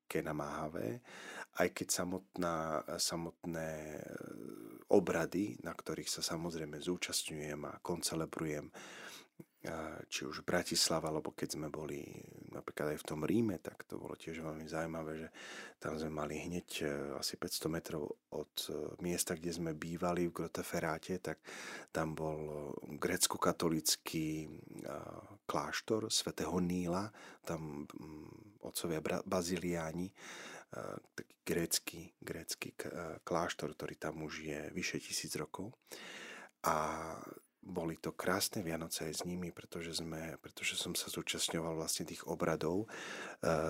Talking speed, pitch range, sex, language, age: 120 wpm, 80-85 Hz, male, Slovak, 40-59